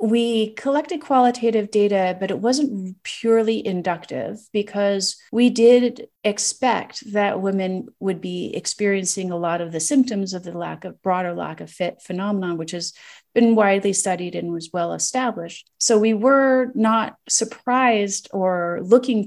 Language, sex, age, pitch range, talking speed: English, female, 40-59, 175-225 Hz, 150 wpm